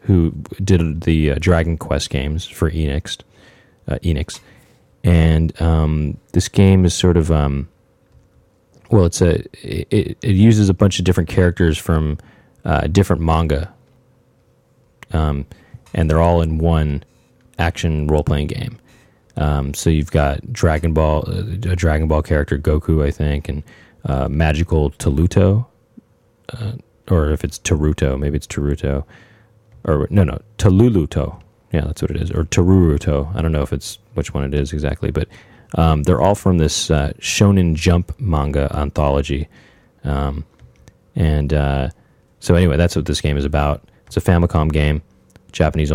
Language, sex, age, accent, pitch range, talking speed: English, male, 30-49, American, 75-95 Hz, 155 wpm